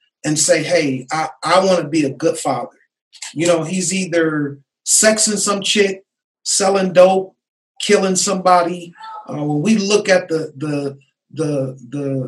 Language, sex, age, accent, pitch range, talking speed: English, male, 40-59, American, 160-190 Hz, 150 wpm